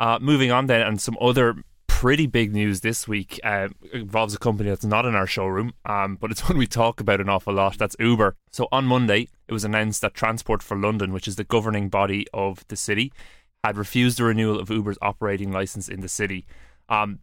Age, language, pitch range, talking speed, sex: 20-39, English, 100-110 Hz, 220 wpm, male